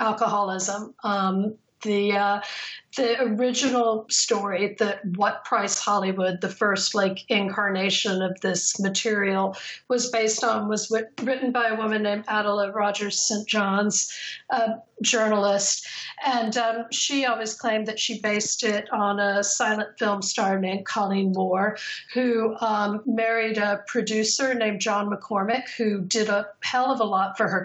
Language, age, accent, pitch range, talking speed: English, 40-59, American, 200-230 Hz, 150 wpm